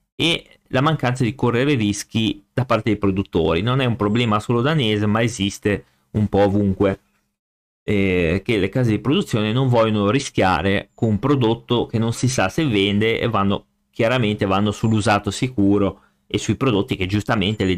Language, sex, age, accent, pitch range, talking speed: Italian, male, 30-49, native, 95-125 Hz, 170 wpm